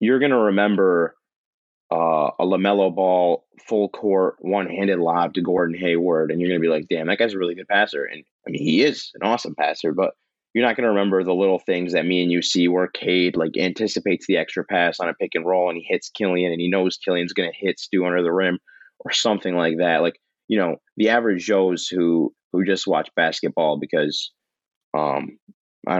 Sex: male